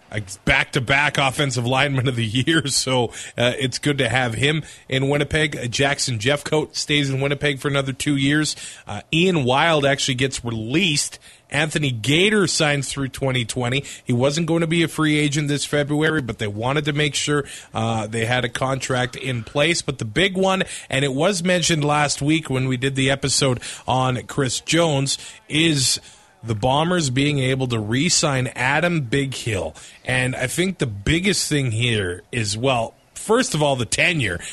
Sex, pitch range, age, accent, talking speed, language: male, 130-160 Hz, 30-49, American, 175 wpm, English